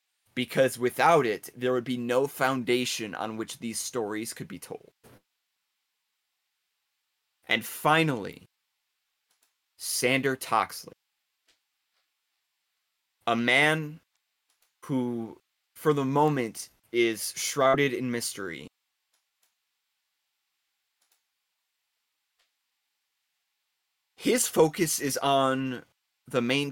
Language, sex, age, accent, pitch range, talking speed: English, male, 20-39, American, 115-130 Hz, 80 wpm